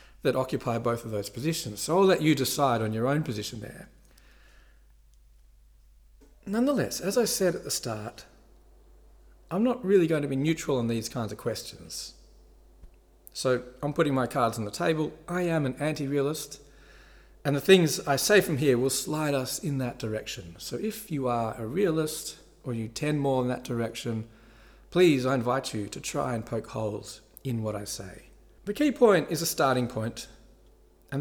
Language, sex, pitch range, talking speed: English, male, 115-155 Hz, 180 wpm